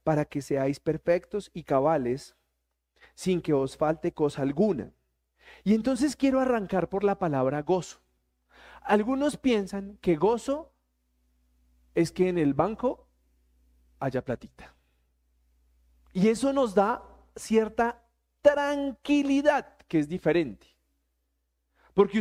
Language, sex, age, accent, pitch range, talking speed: Spanish, male, 40-59, Colombian, 130-205 Hz, 110 wpm